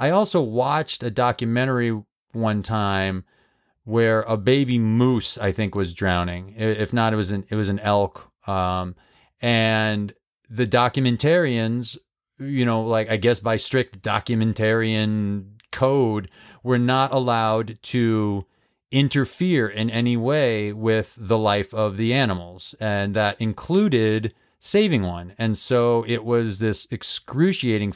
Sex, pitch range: male, 105-125 Hz